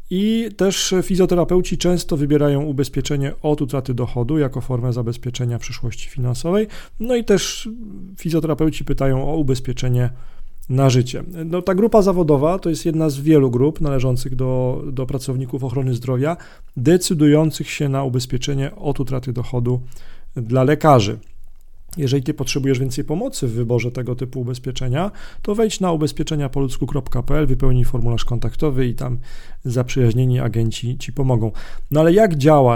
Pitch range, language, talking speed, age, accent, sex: 125-155 Hz, Polish, 135 wpm, 40-59, native, male